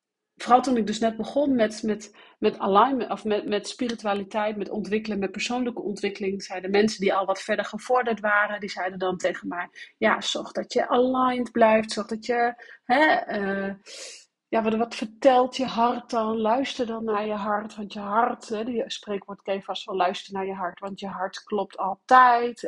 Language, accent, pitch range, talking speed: Dutch, Dutch, 185-230 Hz, 195 wpm